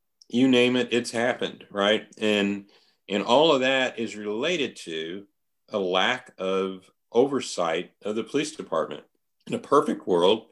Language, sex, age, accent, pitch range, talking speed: English, male, 40-59, American, 95-110 Hz, 150 wpm